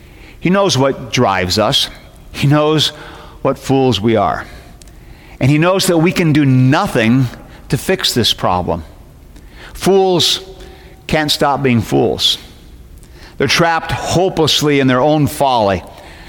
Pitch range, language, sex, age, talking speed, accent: 135-210 Hz, English, male, 50-69, 130 wpm, American